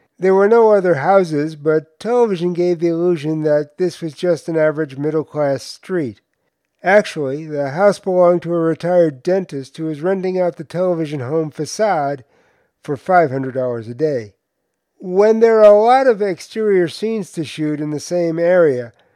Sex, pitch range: male, 150-190 Hz